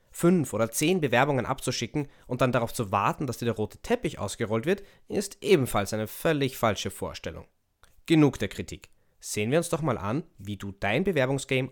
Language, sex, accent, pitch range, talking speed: German, male, German, 100-145 Hz, 185 wpm